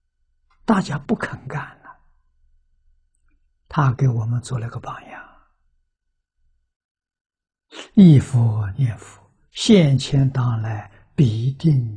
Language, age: Chinese, 60-79